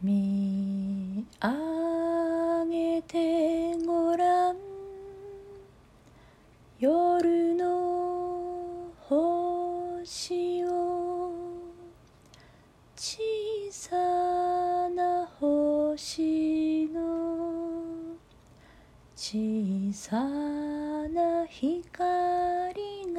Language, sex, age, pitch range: Japanese, female, 30-49, 305-360 Hz